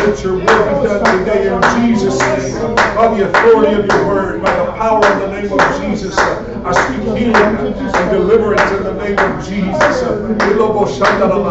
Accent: American